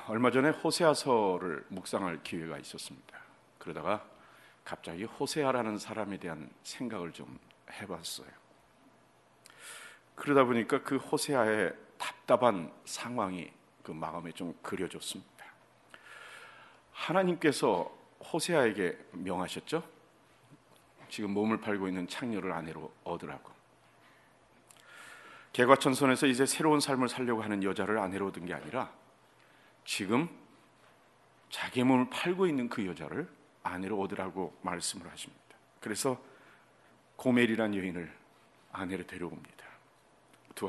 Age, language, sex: 40-59, Korean, male